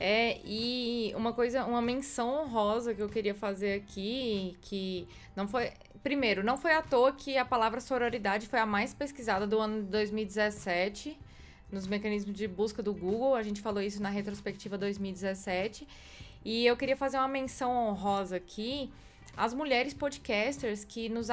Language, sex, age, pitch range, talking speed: Portuguese, female, 20-39, 205-245 Hz, 165 wpm